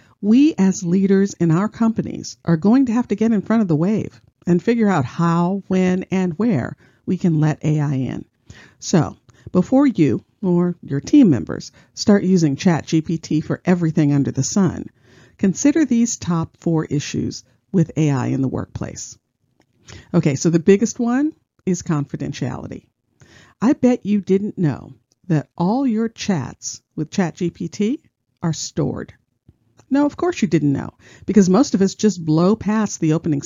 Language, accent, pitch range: English, American, 155-210 Hz